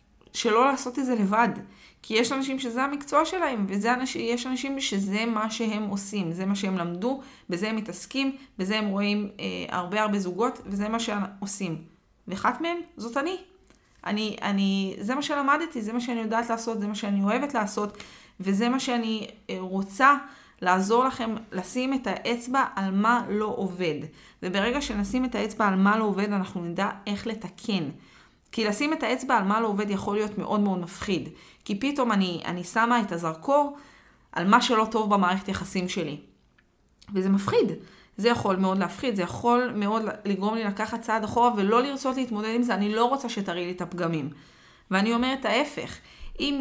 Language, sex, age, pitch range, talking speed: Hebrew, female, 20-39, 195-245 Hz, 175 wpm